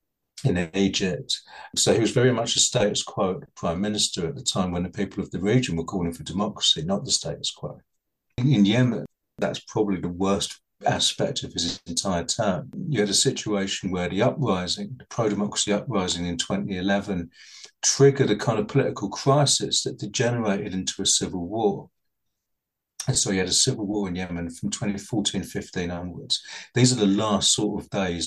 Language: English